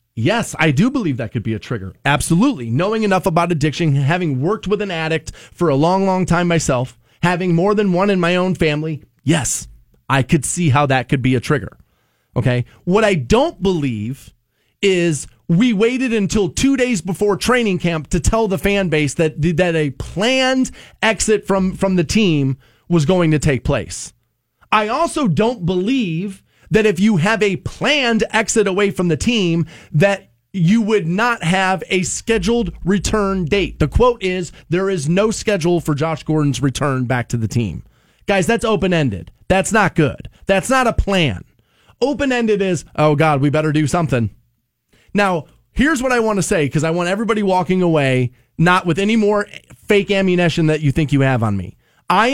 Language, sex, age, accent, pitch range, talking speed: English, male, 30-49, American, 145-205 Hz, 185 wpm